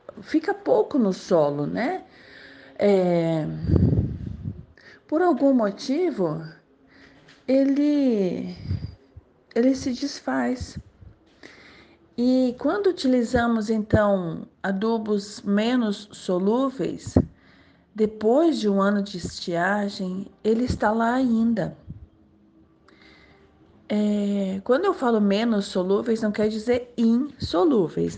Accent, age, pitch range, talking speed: Brazilian, 40-59, 180-255 Hz, 80 wpm